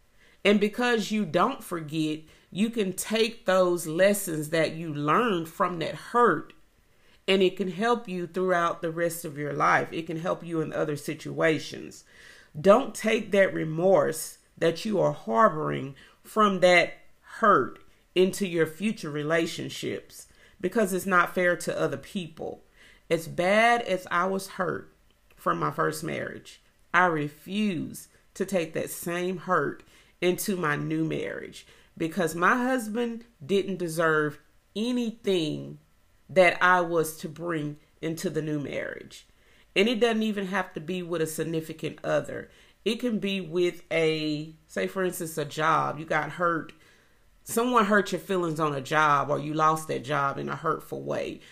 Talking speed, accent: 155 wpm, American